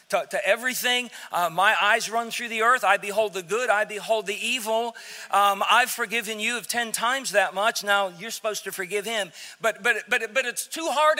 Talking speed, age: 215 wpm, 40-59